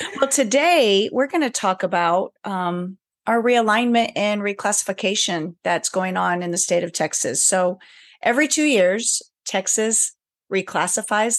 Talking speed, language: 135 wpm, English